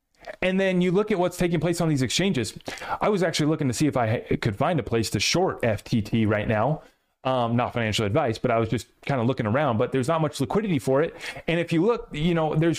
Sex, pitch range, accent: male, 140-195 Hz, American